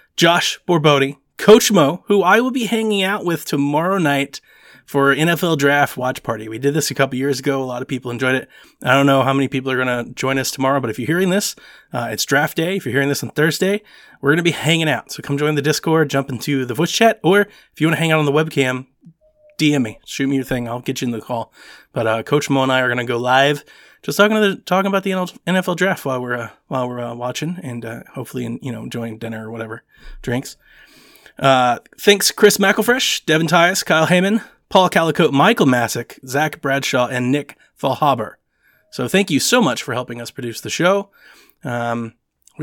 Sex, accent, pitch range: male, American, 125-185 Hz